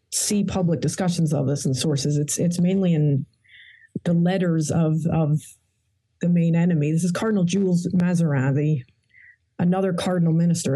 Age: 30-49